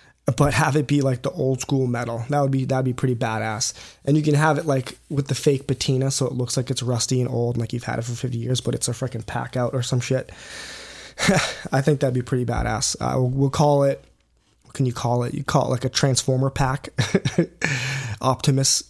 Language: English